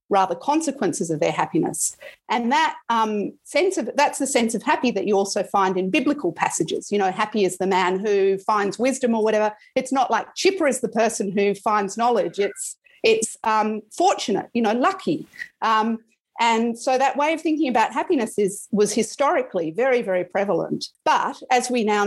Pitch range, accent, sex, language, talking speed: 190-250 Hz, Australian, female, English, 190 wpm